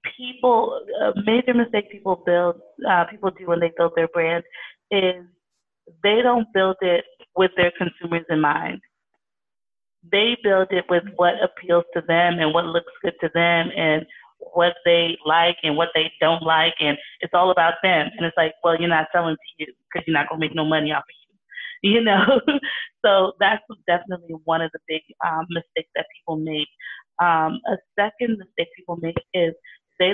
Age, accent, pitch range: 20-39, American, 165-200 Hz